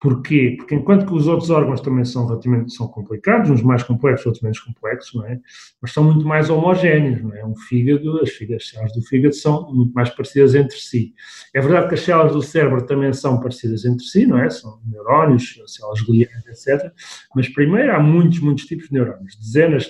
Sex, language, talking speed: male, Portuguese, 210 wpm